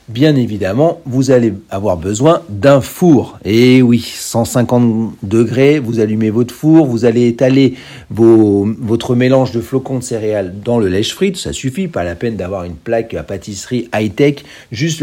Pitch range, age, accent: 110-145 Hz, 50-69, French